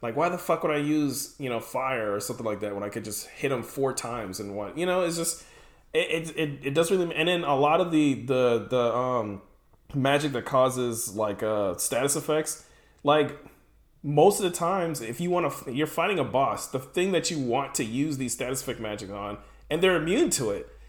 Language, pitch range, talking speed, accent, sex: English, 110-150 Hz, 225 wpm, American, male